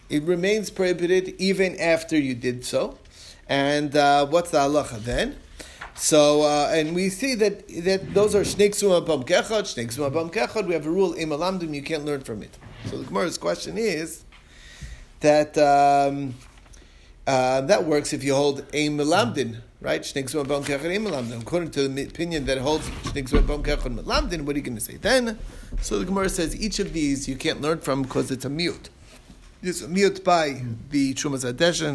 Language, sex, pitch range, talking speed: English, male, 130-170 Hz, 150 wpm